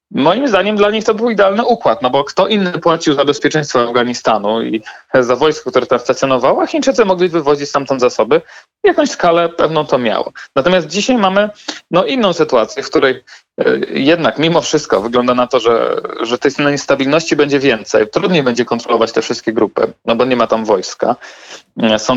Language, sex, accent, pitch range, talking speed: Polish, male, native, 130-185 Hz, 180 wpm